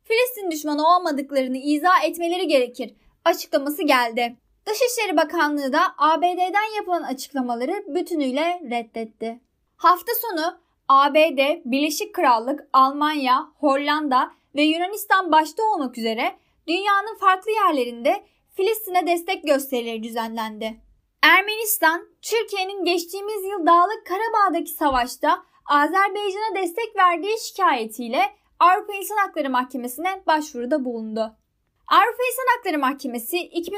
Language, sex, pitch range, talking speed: Turkish, female, 275-390 Hz, 100 wpm